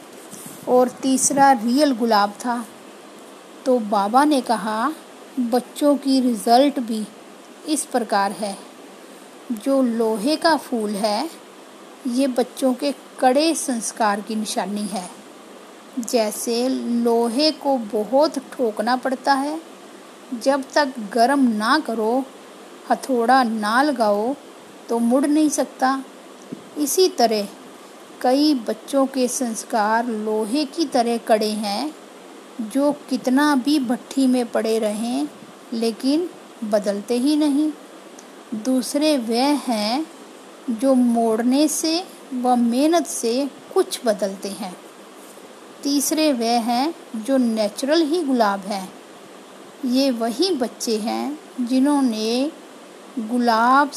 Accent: native